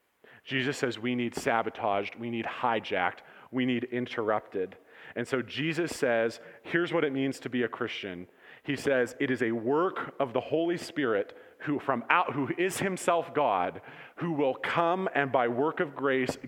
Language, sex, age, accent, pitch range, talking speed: English, male, 40-59, American, 120-155 Hz, 175 wpm